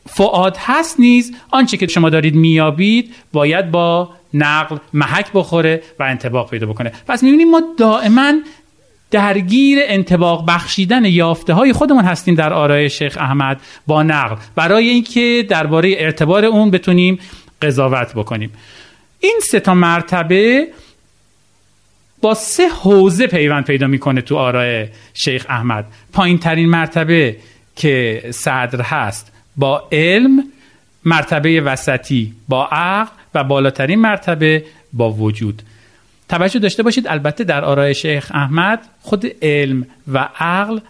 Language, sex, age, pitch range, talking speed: Persian, male, 40-59, 135-210 Hz, 125 wpm